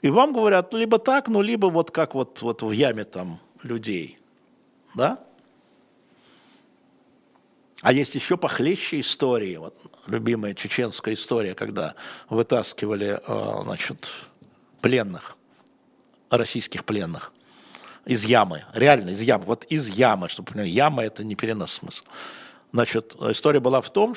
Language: Russian